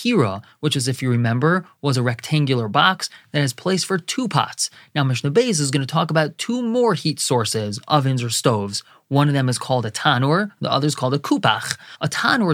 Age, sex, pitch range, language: 20-39, male, 135-185 Hz, English